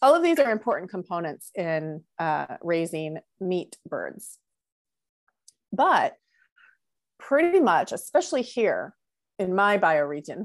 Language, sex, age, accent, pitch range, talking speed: English, female, 30-49, American, 170-215 Hz, 110 wpm